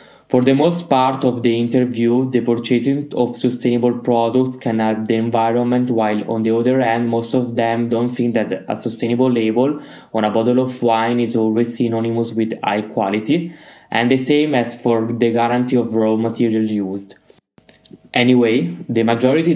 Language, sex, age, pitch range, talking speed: Italian, male, 20-39, 115-125 Hz, 170 wpm